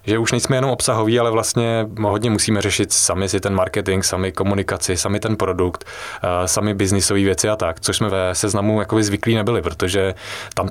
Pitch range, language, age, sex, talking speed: 100-115 Hz, Czech, 20-39, male, 190 wpm